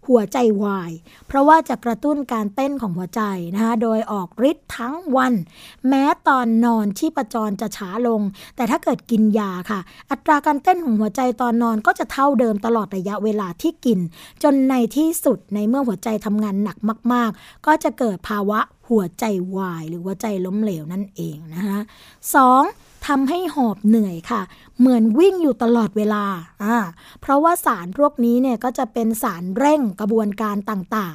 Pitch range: 210-270 Hz